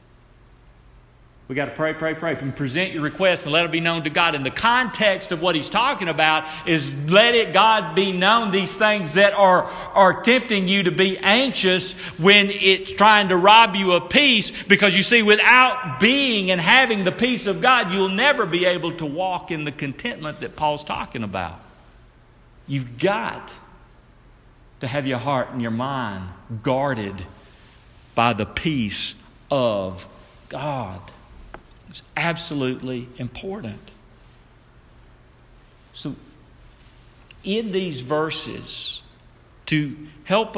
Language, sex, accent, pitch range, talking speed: English, male, American, 135-190 Hz, 145 wpm